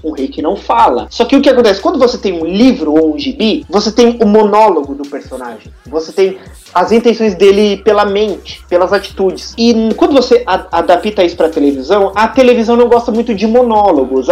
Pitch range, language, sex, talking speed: 170-235 Hz, Portuguese, male, 200 wpm